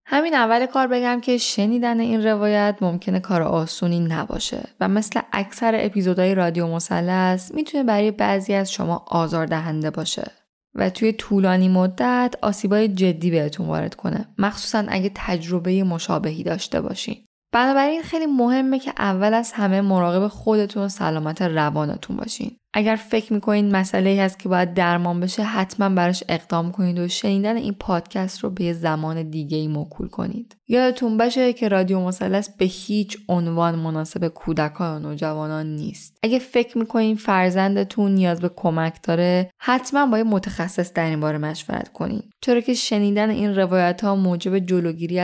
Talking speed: 155 wpm